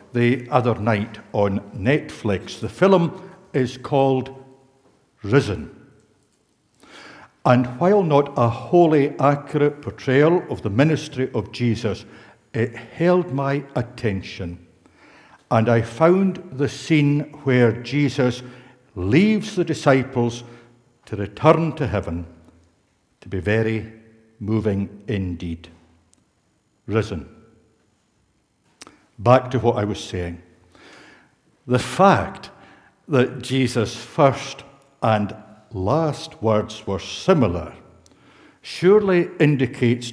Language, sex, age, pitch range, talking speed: English, male, 60-79, 105-140 Hz, 95 wpm